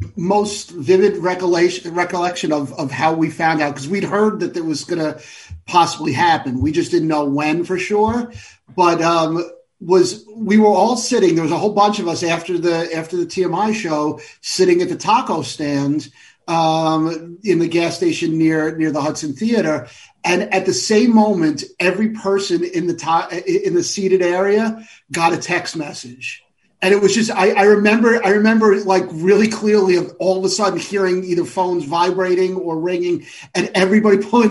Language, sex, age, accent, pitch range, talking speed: English, male, 40-59, American, 165-200 Hz, 185 wpm